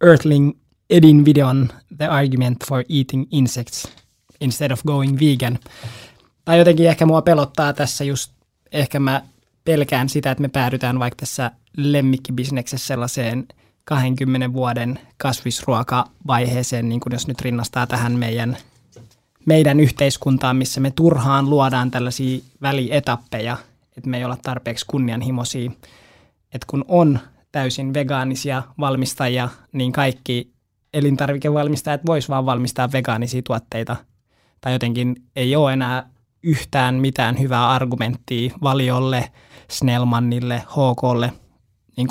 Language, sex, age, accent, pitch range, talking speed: Finnish, male, 20-39, native, 120-140 Hz, 115 wpm